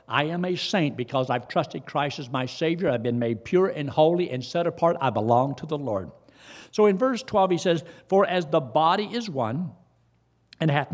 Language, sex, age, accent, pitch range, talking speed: English, male, 60-79, American, 130-175 Hz, 215 wpm